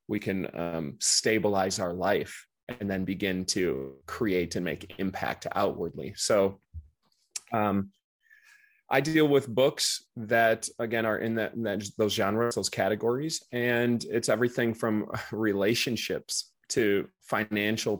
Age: 30-49